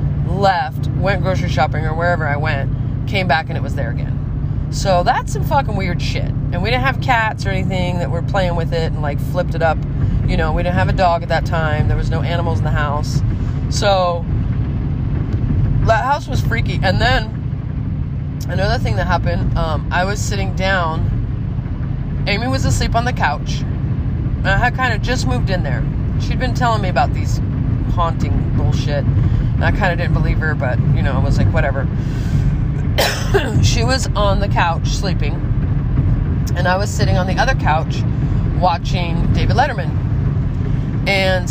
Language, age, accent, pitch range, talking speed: English, 30-49, American, 120-135 Hz, 180 wpm